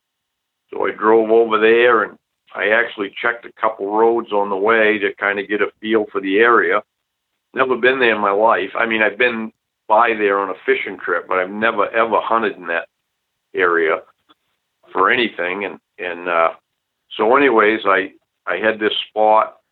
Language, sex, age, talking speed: English, male, 50-69, 185 wpm